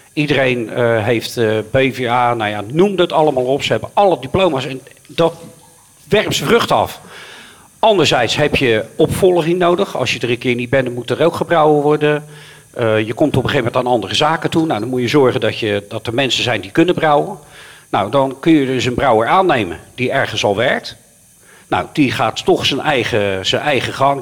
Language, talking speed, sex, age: Dutch, 205 wpm, male, 50-69